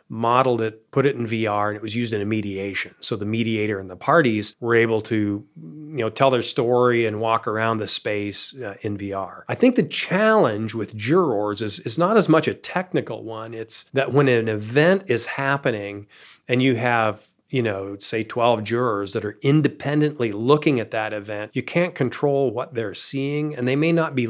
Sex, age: male, 40-59